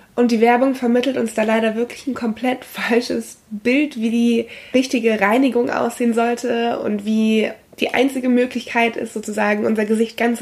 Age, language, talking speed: 20-39, German, 160 wpm